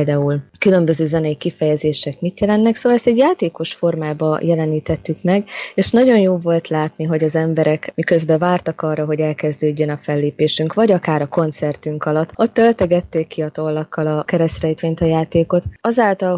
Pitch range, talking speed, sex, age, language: 155-175 Hz, 155 wpm, female, 20-39, Hungarian